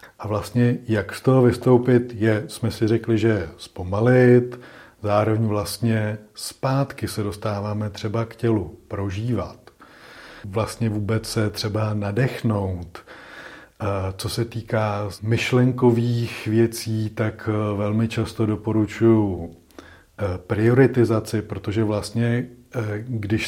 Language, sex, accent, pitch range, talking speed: Czech, male, native, 105-120 Hz, 95 wpm